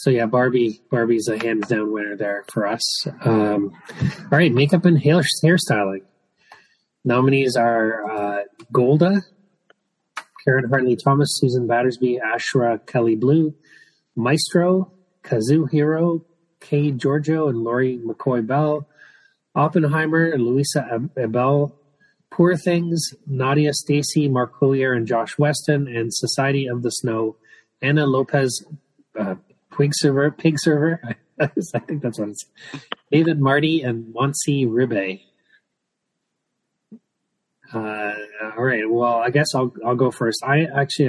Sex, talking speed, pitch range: male, 115 wpm, 115-150 Hz